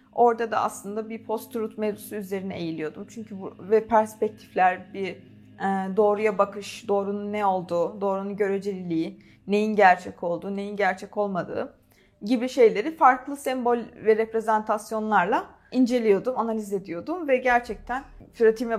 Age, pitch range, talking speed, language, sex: 30-49, 195-235 Hz, 120 wpm, Turkish, female